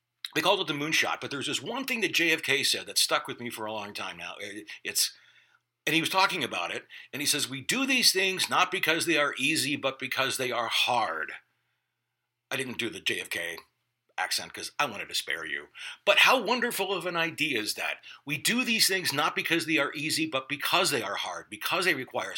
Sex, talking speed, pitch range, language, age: male, 225 wpm, 120-190 Hz, English, 60-79